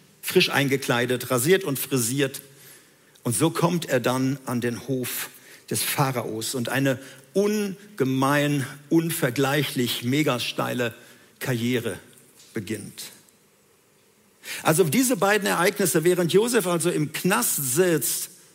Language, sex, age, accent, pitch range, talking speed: German, male, 50-69, German, 130-165 Hz, 105 wpm